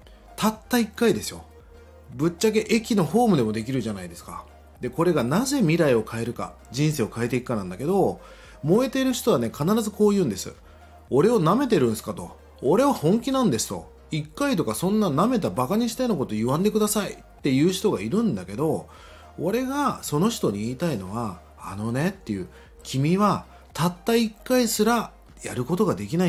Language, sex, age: Japanese, male, 30-49